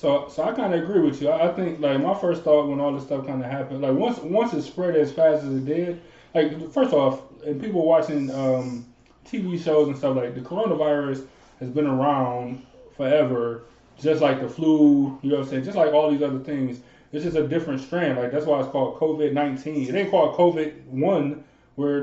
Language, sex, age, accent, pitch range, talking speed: English, male, 20-39, American, 130-160 Hz, 220 wpm